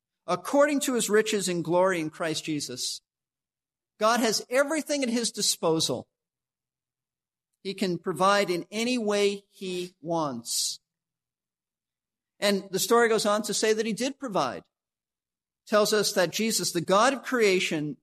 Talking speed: 140 wpm